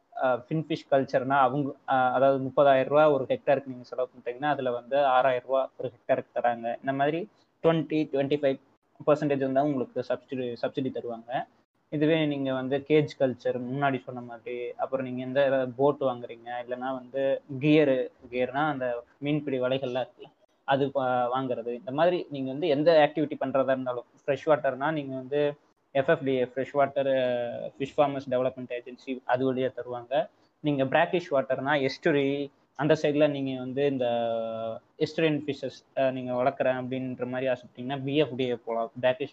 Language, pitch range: Tamil, 125-145 Hz